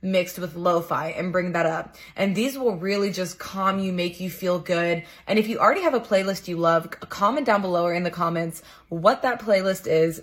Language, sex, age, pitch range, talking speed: English, female, 20-39, 175-215 Hz, 225 wpm